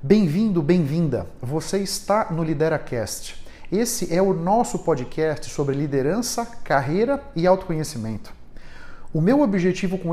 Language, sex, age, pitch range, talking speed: Portuguese, male, 50-69, 150-205 Hz, 120 wpm